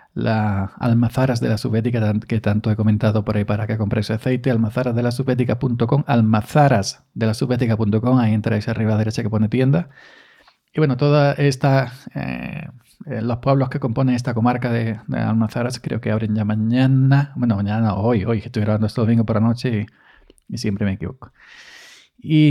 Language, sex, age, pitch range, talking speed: Spanish, male, 40-59, 110-135 Hz, 170 wpm